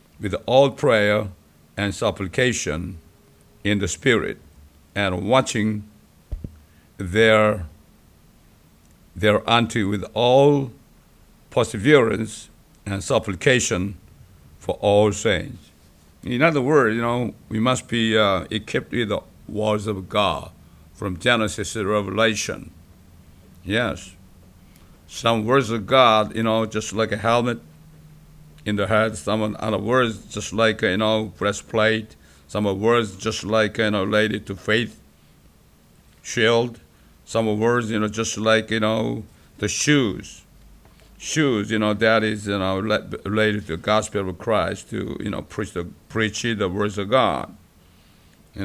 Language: English